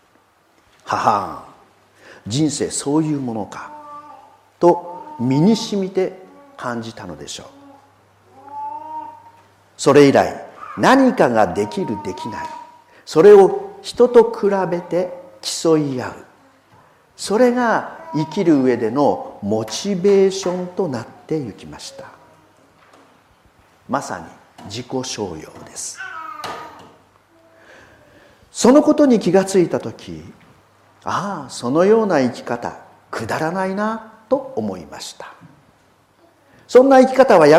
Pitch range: 155-255 Hz